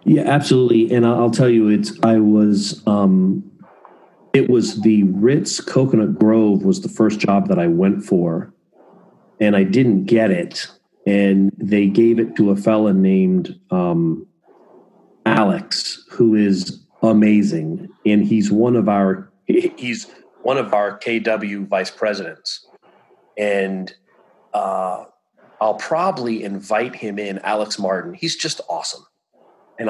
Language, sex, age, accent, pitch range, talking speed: English, male, 40-59, American, 100-120 Hz, 135 wpm